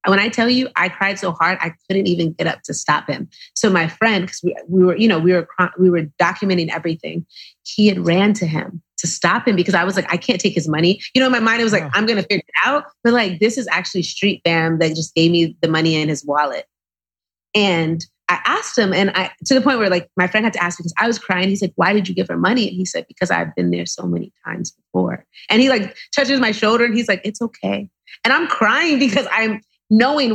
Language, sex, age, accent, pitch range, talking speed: English, female, 30-49, American, 165-205 Hz, 265 wpm